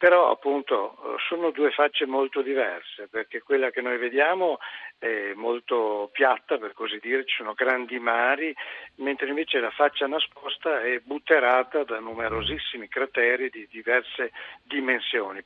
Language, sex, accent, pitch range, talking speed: Italian, male, native, 110-150 Hz, 135 wpm